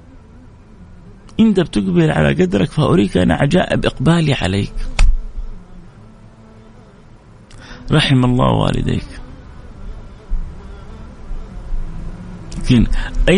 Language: Arabic